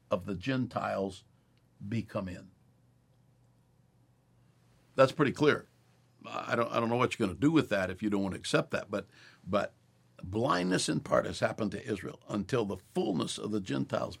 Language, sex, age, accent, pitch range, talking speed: English, male, 60-79, American, 100-125 Hz, 180 wpm